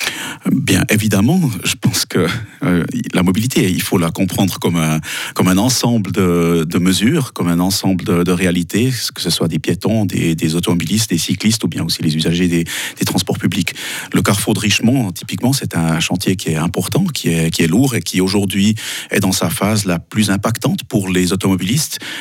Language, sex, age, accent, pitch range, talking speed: French, male, 40-59, French, 85-100 Hz, 200 wpm